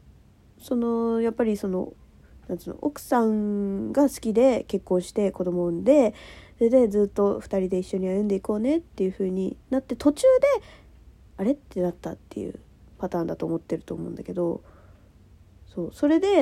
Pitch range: 160-215 Hz